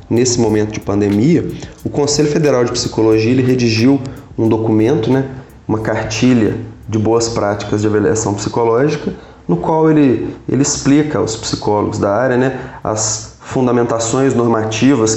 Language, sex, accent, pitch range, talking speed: Portuguese, male, Brazilian, 110-125 Hz, 140 wpm